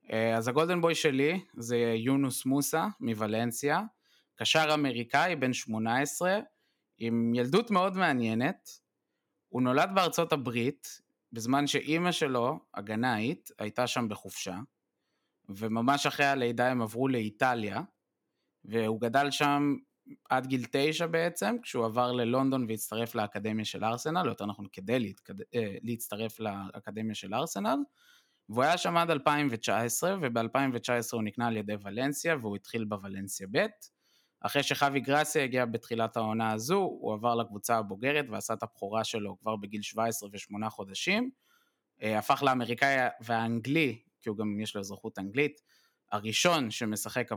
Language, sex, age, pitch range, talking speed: Hebrew, male, 20-39, 110-145 Hz, 130 wpm